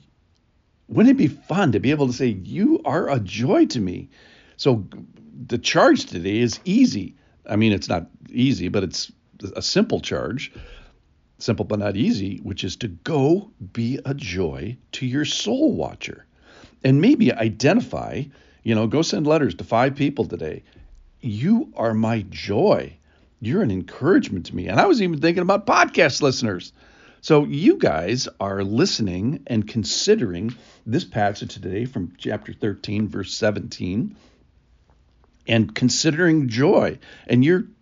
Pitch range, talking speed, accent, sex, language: 100-155 Hz, 150 wpm, American, male, English